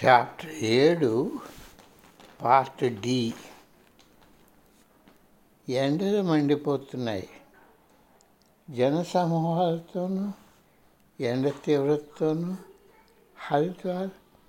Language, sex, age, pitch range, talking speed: Telugu, male, 60-79, 135-185 Hz, 40 wpm